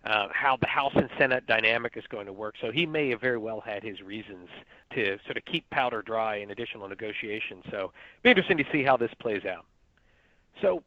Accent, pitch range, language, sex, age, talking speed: American, 120-160 Hz, English, male, 40-59, 220 wpm